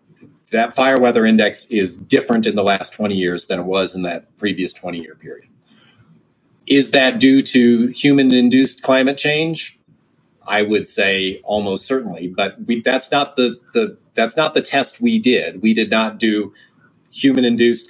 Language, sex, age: English, male, 40-59